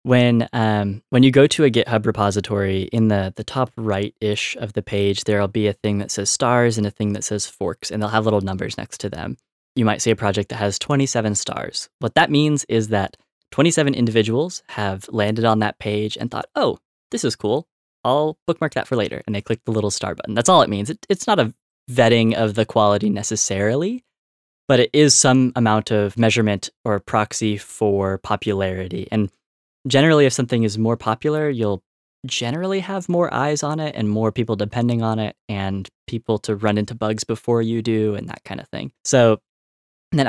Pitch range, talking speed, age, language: 105-125 Hz, 205 wpm, 10-29, English